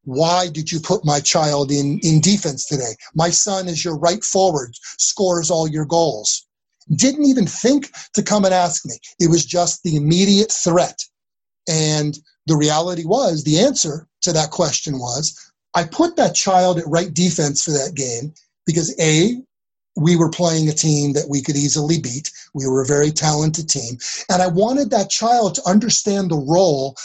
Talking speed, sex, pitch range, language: 180 wpm, male, 155-195 Hz, English